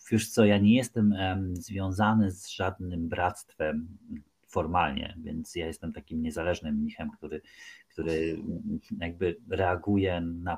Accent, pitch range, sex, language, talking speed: native, 85-110 Hz, male, Polish, 120 wpm